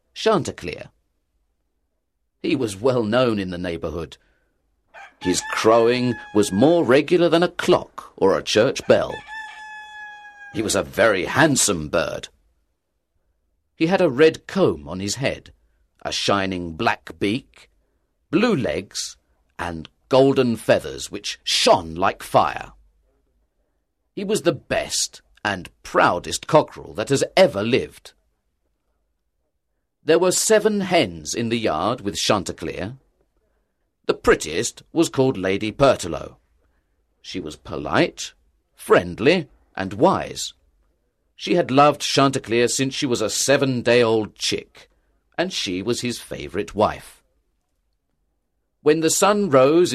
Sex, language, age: male, Chinese, 50-69